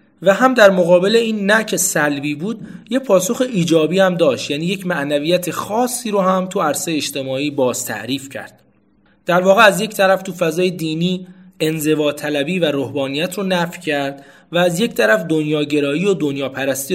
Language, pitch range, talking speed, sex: Persian, 140-180 Hz, 165 wpm, male